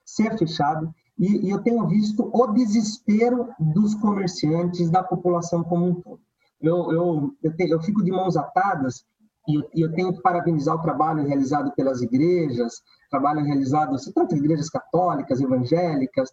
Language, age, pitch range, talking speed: Portuguese, 30-49, 160-225 Hz, 145 wpm